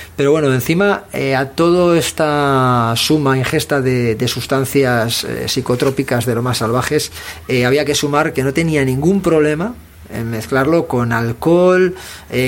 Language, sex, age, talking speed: Spanish, male, 40-59, 155 wpm